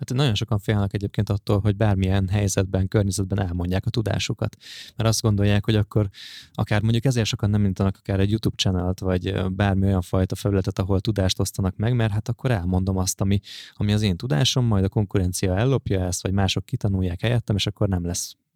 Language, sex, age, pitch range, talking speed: Hungarian, male, 20-39, 95-110 Hz, 195 wpm